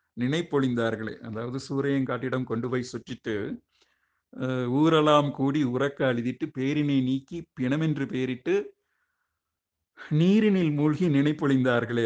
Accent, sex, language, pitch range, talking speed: native, male, Tamil, 125-150 Hz, 90 wpm